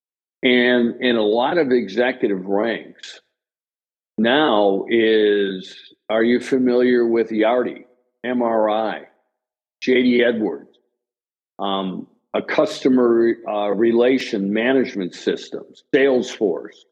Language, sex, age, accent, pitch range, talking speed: English, male, 50-69, American, 110-130 Hz, 90 wpm